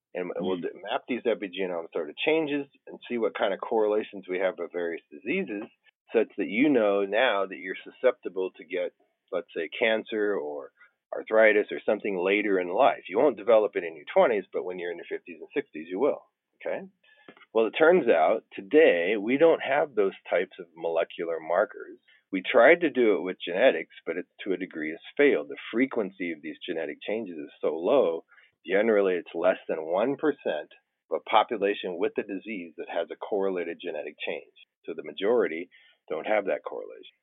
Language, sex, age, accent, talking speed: English, male, 40-59, American, 185 wpm